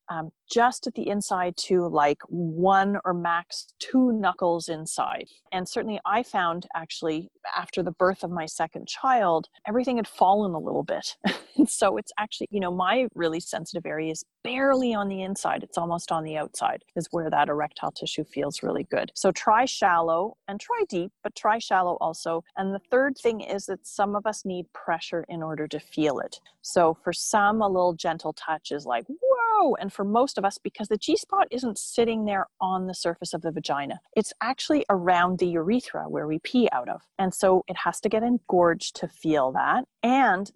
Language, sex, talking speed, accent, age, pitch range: English, female, 195 wpm, American, 30-49, 170-220 Hz